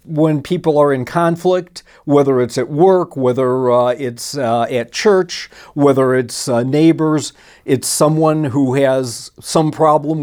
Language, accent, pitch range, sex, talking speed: English, American, 125-150 Hz, male, 145 wpm